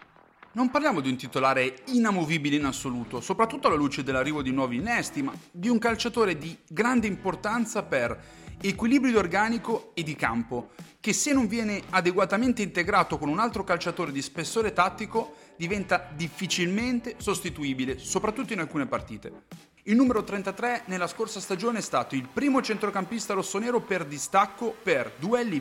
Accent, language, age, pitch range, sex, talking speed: native, Italian, 30-49, 140-220 Hz, male, 150 wpm